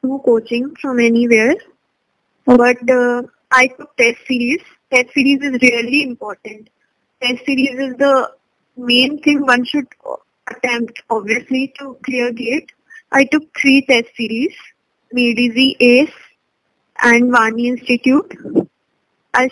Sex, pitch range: female, 240-275 Hz